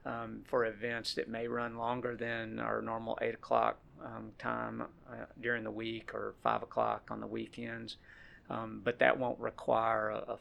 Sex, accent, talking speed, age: male, American, 175 wpm, 50-69